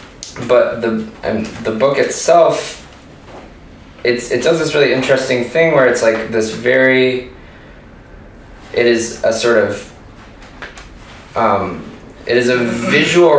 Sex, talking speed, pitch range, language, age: male, 125 wpm, 100-130 Hz, English, 20-39